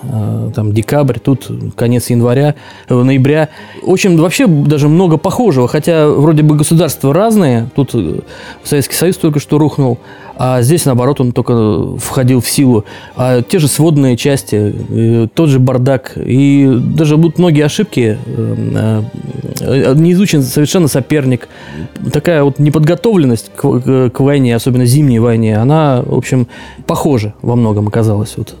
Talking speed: 130 wpm